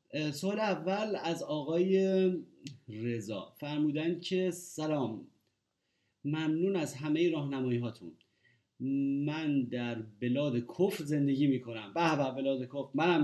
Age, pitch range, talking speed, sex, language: 30-49, 120-145 Hz, 115 wpm, male, Persian